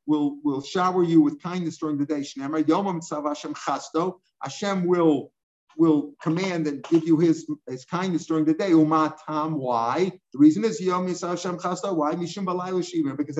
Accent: American